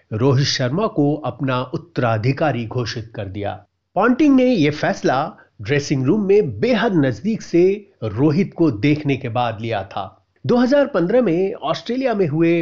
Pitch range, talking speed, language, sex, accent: 130-185 Hz, 145 wpm, Hindi, male, native